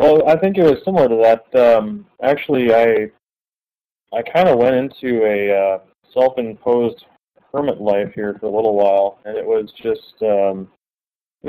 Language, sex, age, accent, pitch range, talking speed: English, male, 20-39, American, 100-115 Hz, 160 wpm